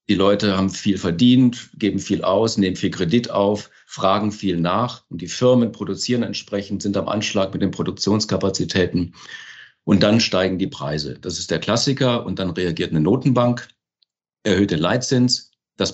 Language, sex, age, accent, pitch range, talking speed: German, male, 50-69, German, 95-115 Hz, 165 wpm